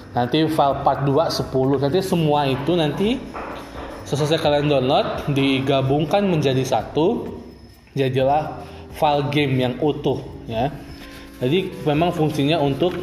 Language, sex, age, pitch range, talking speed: Indonesian, male, 20-39, 125-155 Hz, 115 wpm